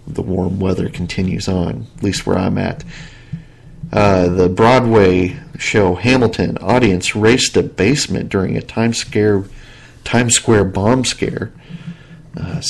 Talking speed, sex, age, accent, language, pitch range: 130 wpm, male, 40-59, American, English, 95-115 Hz